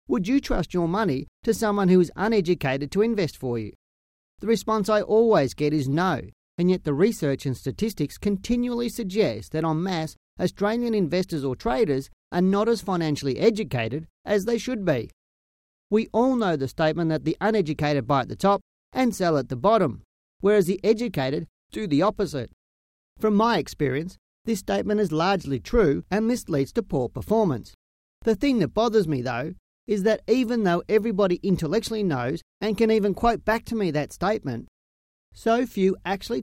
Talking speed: 175 wpm